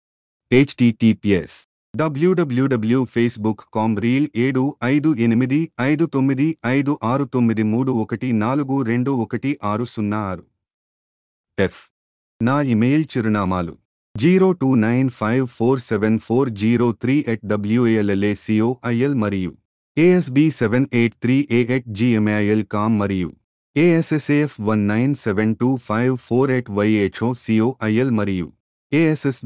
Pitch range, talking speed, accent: 105-135 Hz, 40 wpm, native